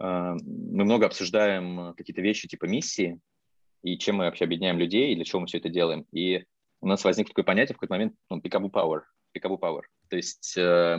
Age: 20-39